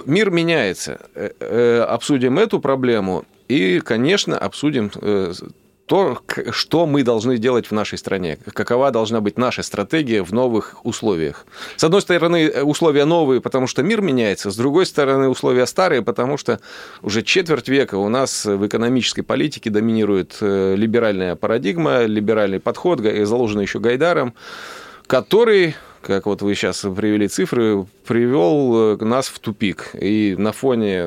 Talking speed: 135 wpm